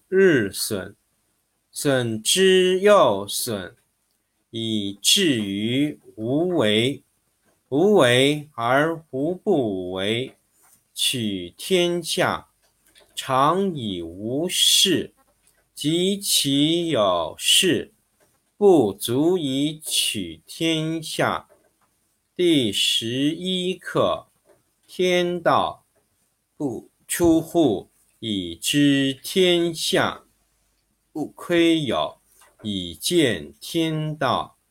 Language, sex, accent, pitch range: Chinese, male, native, 110-175 Hz